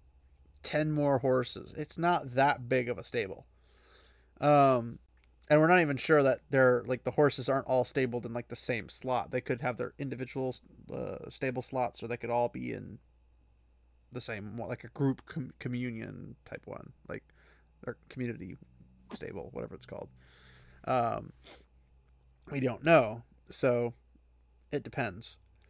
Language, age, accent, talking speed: English, 30-49, American, 155 wpm